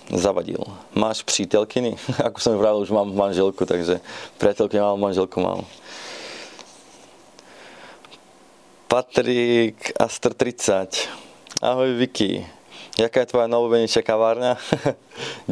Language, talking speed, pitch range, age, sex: Czech, 95 wpm, 95-110 Hz, 20-39, male